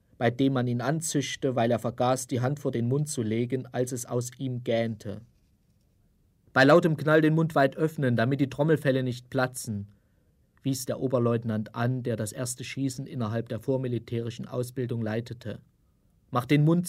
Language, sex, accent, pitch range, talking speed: German, male, German, 115-145 Hz, 170 wpm